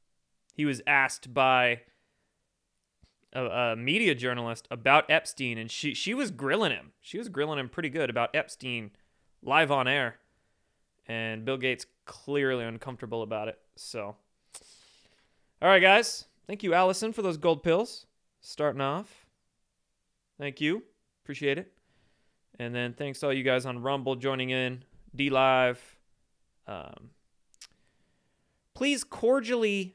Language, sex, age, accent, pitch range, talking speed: English, male, 20-39, American, 130-175 Hz, 130 wpm